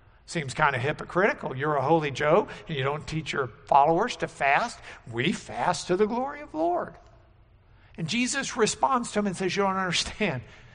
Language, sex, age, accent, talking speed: English, male, 60-79, American, 190 wpm